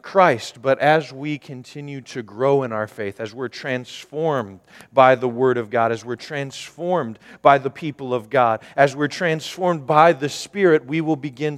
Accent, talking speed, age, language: American, 180 wpm, 40-59, English